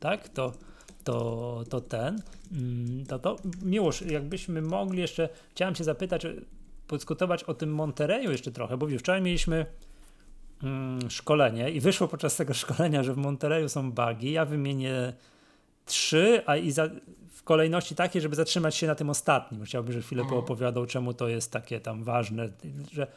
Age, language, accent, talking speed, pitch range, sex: 30-49, Polish, native, 160 wpm, 125-160 Hz, male